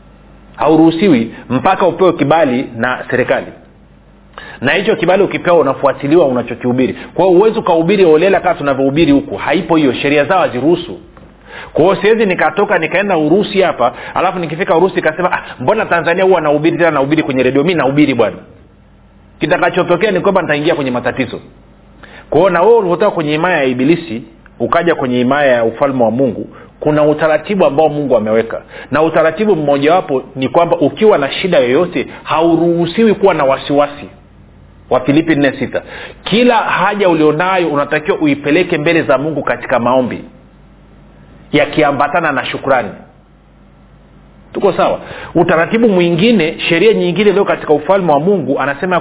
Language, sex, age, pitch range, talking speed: Swahili, male, 40-59, 130-175 Hz, 140 wpm